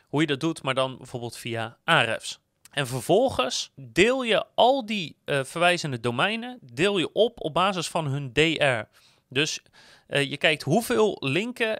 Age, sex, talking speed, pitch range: 30-49, male, 165 wpm, 130-185 Hz